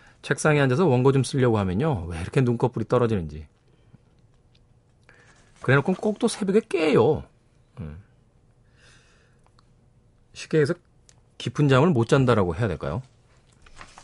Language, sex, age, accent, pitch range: Korean, male, 40-59, native, 110-135 Hz